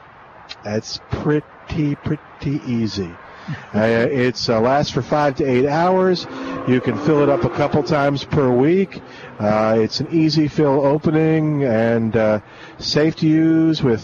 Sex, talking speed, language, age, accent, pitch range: male, 145 wpm, English, 50-69, American, 125-155 Hz